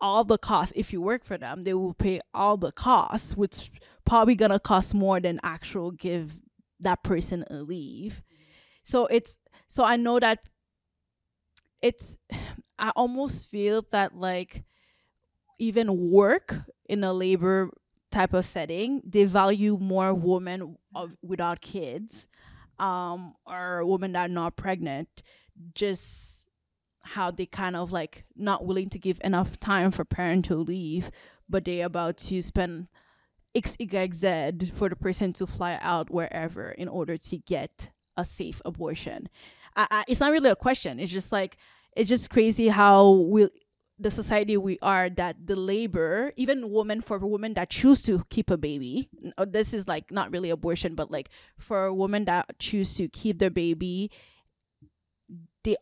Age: 20-39